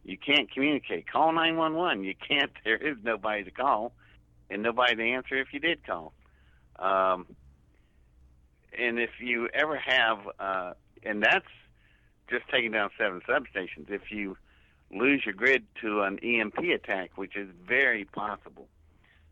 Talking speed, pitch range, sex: 155 wpm, 90-120 Hz, male